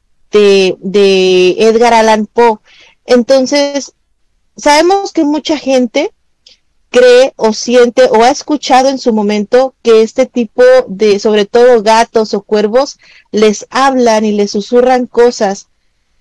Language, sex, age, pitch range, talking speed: Spanish, female, 40-59, 215-255 Hz, 125 wpm